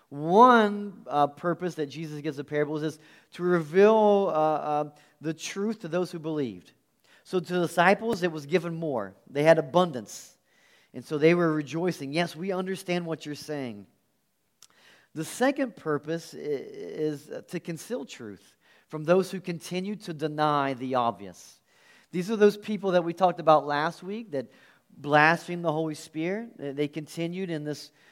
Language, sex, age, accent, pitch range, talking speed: English, male, 40-59, American, 145-180 Hz, 160 wpm